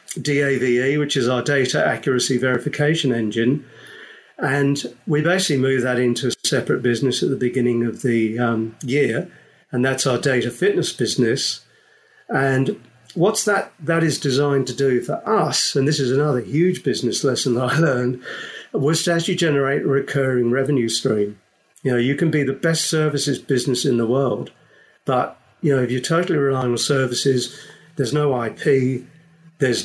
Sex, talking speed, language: male, 165 wpm, English